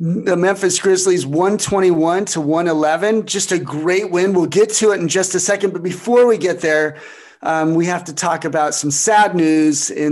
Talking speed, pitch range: 195 wpm, 155-185 Hz